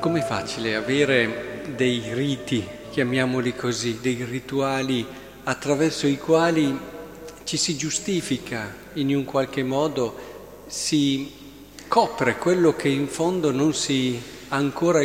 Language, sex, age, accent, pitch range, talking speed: Italian, male, 50-69, native, 125-165 Hz, 115 wpm